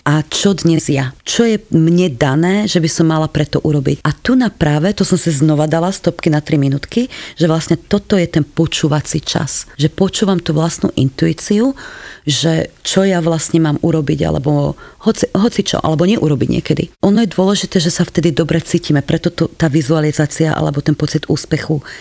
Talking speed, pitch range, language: 185 wpm, 155-180 Hz, Slovak